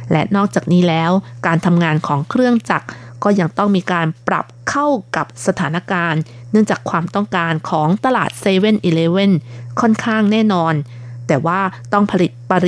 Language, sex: Thai, female